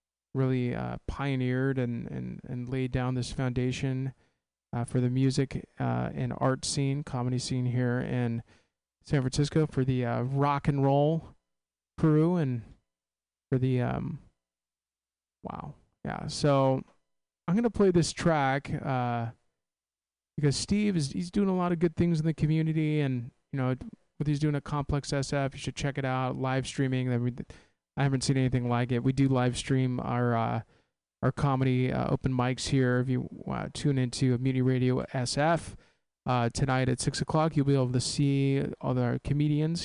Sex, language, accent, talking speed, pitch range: male, English, American, 175 wpm, 125-150 Hz